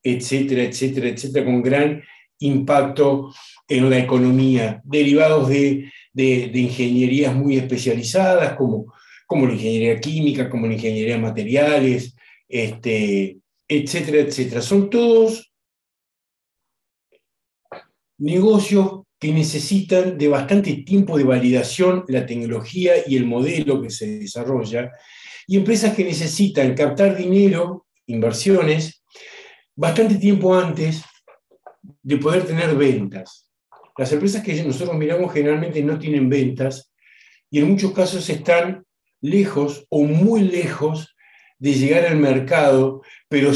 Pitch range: 130-180 Hz